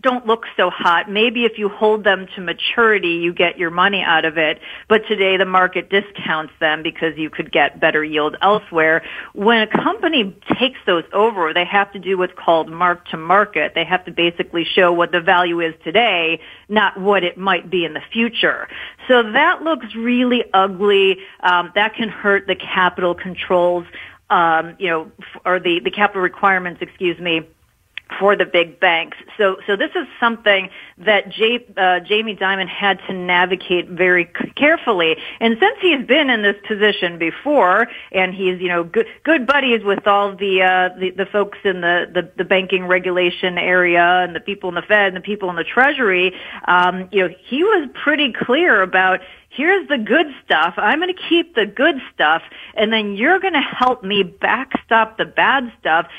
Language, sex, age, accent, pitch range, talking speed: English, female, 40-59, American, 180-235 Hz, 185 wpm